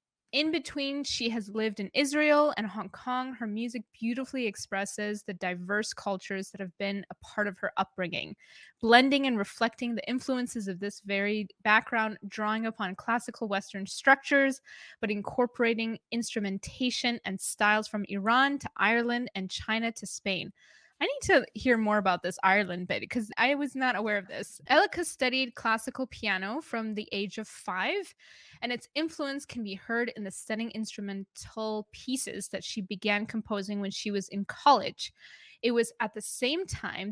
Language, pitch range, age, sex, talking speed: English, 200-255 Hz, 20-39, female, 165 wpm